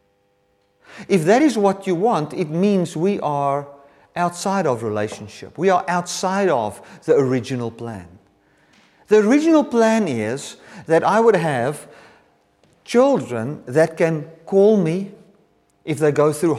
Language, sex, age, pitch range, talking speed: English, male, 50-69, 135-195 Hz, 135 wpm